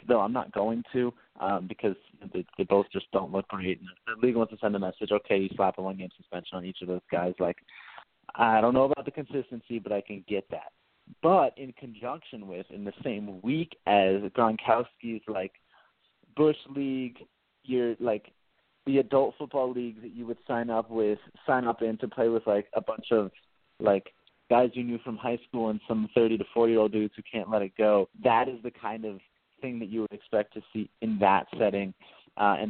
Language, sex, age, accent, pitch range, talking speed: English, male, 30-49, American, 100-120 Hz, 210 wpm